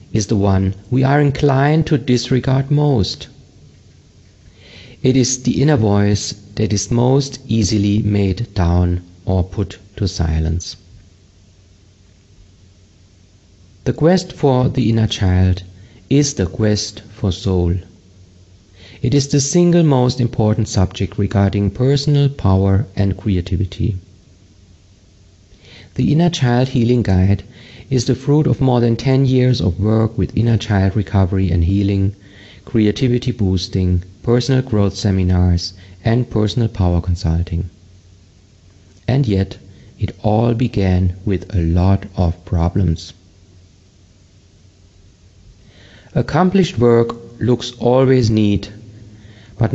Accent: German